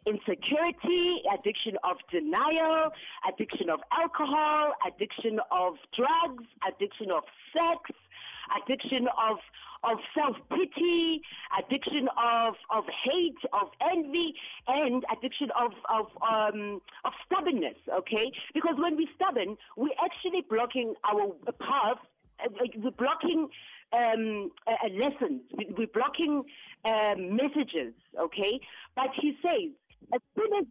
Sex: female